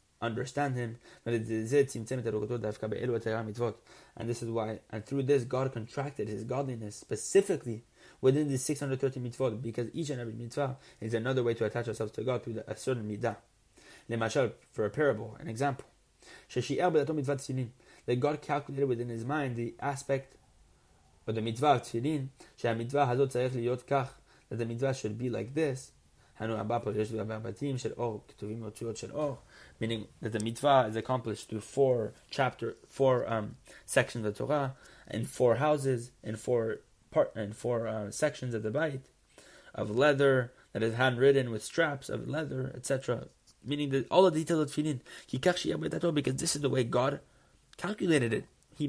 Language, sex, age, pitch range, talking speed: English, male, 30-49, 115-140 Hz, 145 wpm